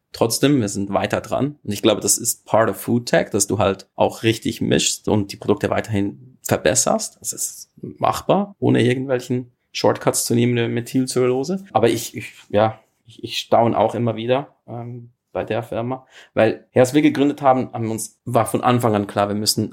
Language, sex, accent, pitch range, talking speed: German, male, German, 105-125 Hz, 190 wpm